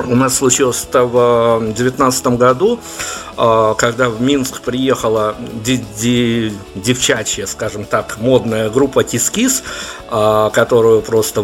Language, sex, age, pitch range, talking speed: Russian, male, 50-69, 115-130 Hz, 105 wpm